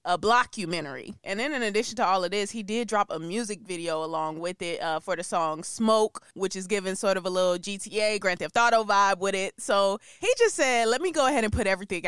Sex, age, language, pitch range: female, 20-39, English, 180-235 Hz